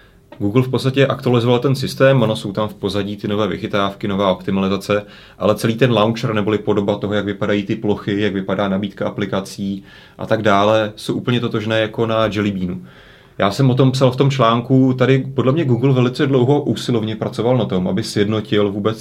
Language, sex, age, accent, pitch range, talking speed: Czech, male, 30-49, native, 100-110 Hz, 195 wpm